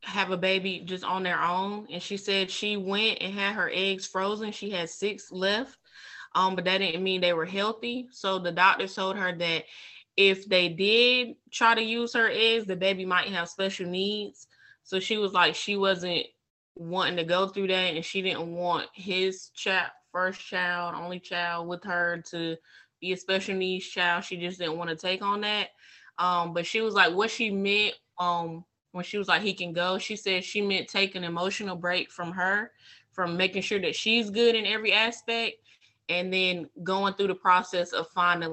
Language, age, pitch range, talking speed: English, 20-39, 175-200 Hz, 200 wpm